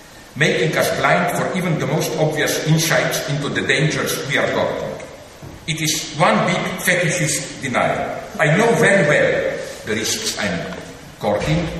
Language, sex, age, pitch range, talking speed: English, male, 50-69, 150-190 Hz, 145 wpm